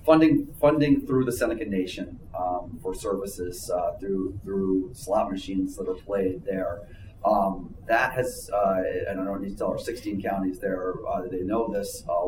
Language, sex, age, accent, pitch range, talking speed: English, male, 30-49, American, 95-110 Hz, 185 wpm